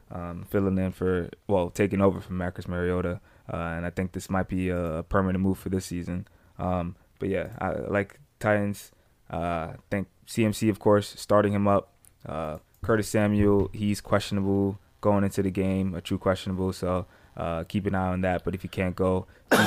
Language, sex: English, male